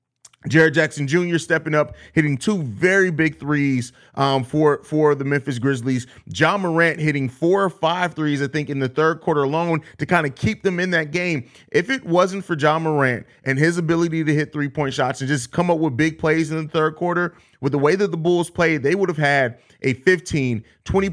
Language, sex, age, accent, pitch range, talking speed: English, male, 30-49, American, 140-170 Hz, 220 wpm